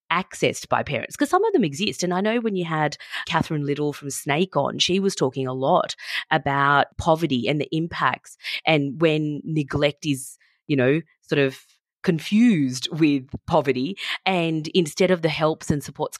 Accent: Australian